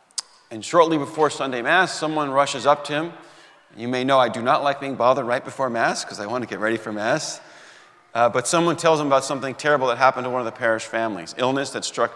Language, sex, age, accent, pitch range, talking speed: English, male, 40-59, American, 120-155 Hz, 240 wpm